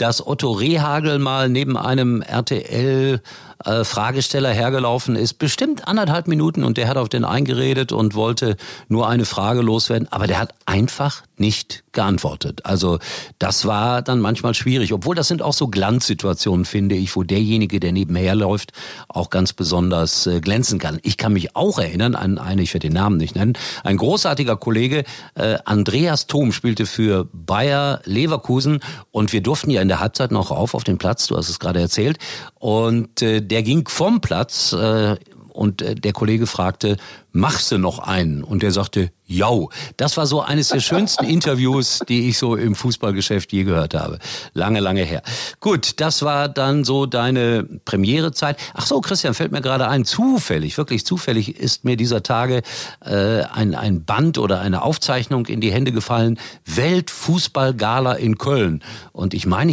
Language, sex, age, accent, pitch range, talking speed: German, male, 50-69, German, 100-135 Hz, 170 wpm